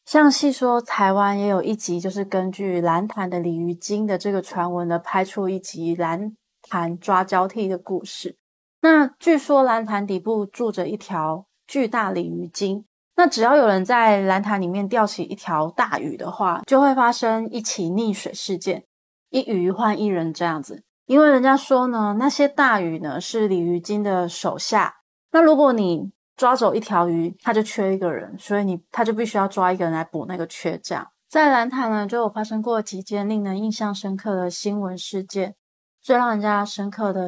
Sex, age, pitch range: female, 20-39, 185-220 Hz